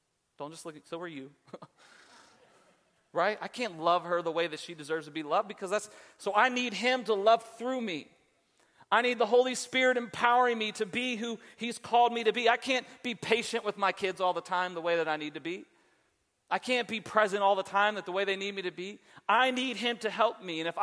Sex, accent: male, American